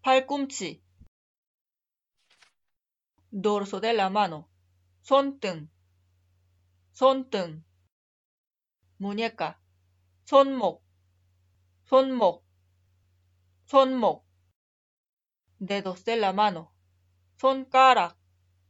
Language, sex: Korean, female